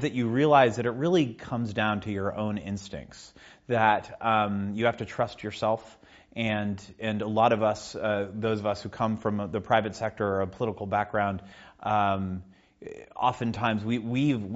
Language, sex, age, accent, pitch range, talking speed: Danish, male, 30-49, American, 95-115 Hz, 175 wpm